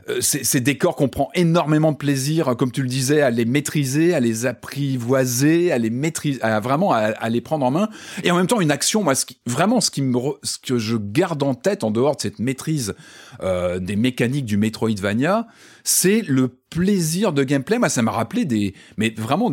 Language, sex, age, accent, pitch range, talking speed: French, male, 30-49, French, 120-175 Hz, 215 wpm